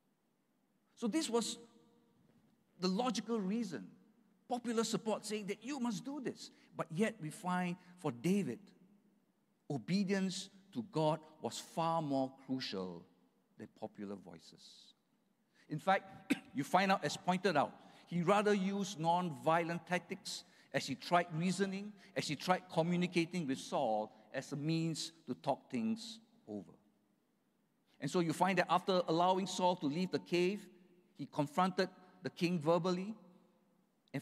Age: 50-69